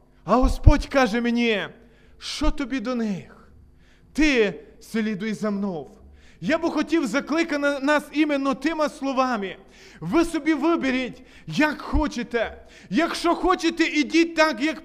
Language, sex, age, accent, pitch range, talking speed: Ukrainian, male, 20-39, native, 255-310 Hz, 120 wpm